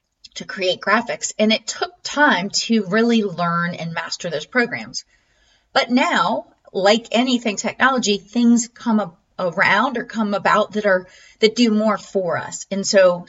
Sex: female